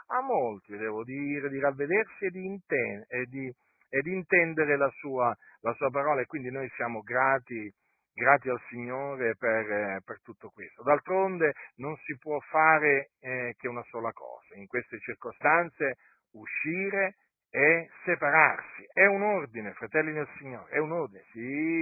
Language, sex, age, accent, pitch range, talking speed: Italian, male, 50-69, native, 135-175 Hz, 155 wpm